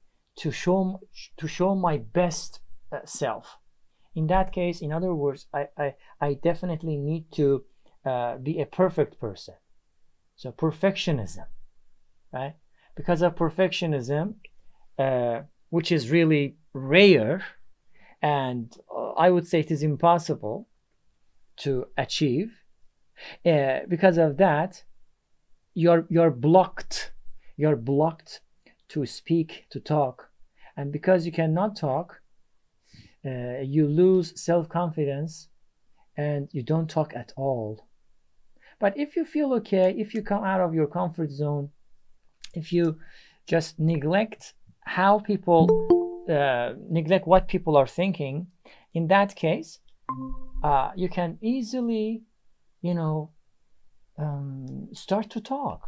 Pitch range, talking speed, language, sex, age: 145-185 Hz, 120 wpm, English, male, 40-59